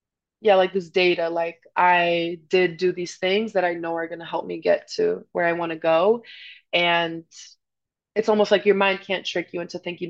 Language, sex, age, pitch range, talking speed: English, female, 20-39, 175-200 Hz, 215 wpm